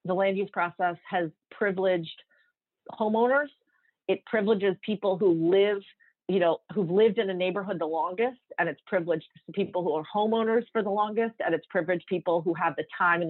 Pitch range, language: 175-225 Hz, English